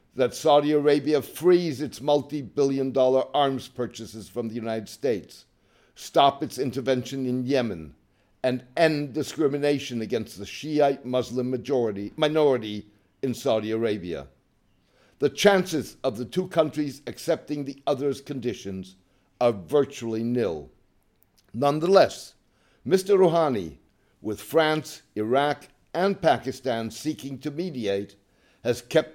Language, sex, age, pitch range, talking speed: English, male, 60-79, 115-145 Hz, 115 wpm